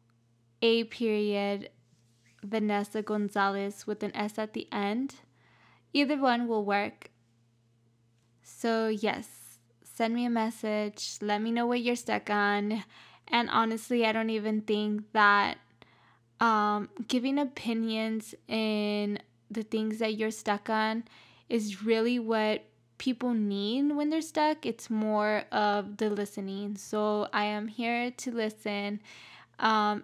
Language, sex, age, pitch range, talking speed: English, female, 10-29, 200-230 Hz, 130 wpm